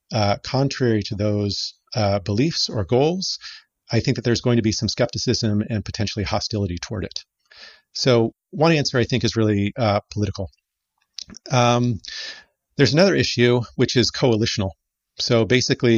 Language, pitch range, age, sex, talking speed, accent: English, 105-120 Hz, 40-59, male, 150 wpm, American